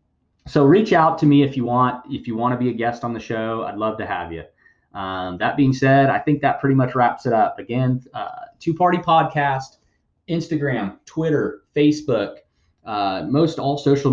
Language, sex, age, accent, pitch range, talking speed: English, male, 30-49, American, 110-140 Hz, 200 wpm